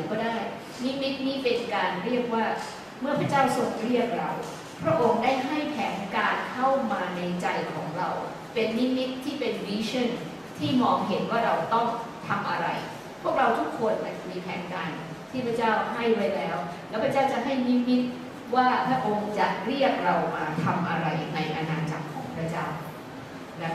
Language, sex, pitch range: English, female, 165-235 Hz